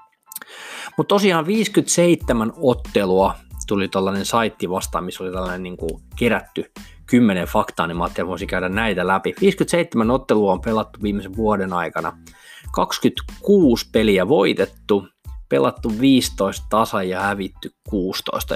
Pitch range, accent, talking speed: 95-115 Hz, native, 115 wpm